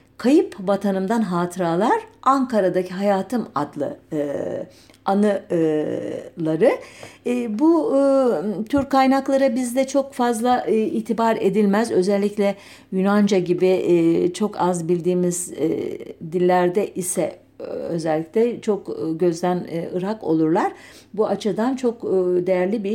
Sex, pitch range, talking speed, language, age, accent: female, 180-265 Hz, 105 wpm, German, 50-69, Turkish